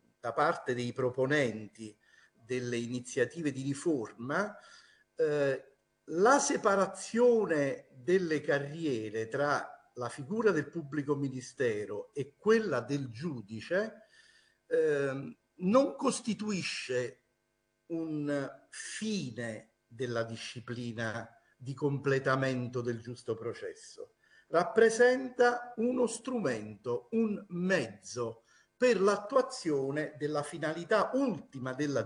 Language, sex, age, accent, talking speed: Italian, male, 50-69, native, 85 wpm